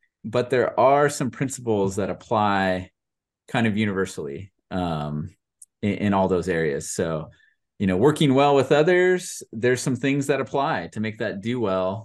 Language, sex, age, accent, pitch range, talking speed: English, male, 30-49, American, 95-120 Hz, 165 wpm